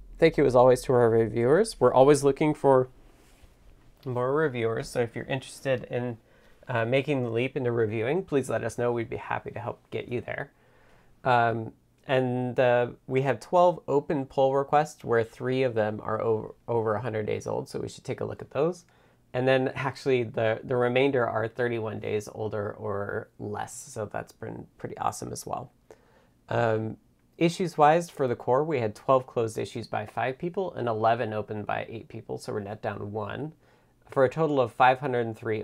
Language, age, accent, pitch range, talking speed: English, 30-49, American, 110-135 Hz, 185 wpm